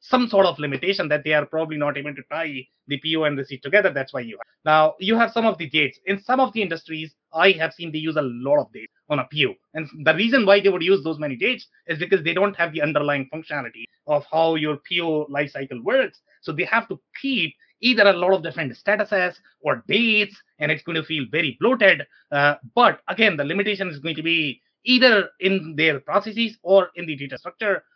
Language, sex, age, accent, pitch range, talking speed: English, male, 30-49, Indian, 150-200 Hz, 230 wpm